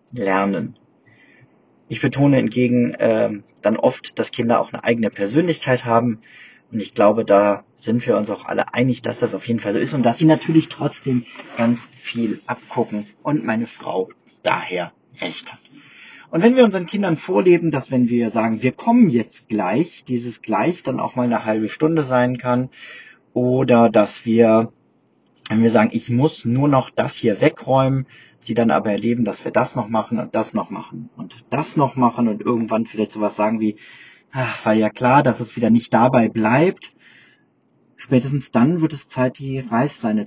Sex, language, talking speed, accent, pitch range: male, German, 180 wpm, German, 110-140 Hz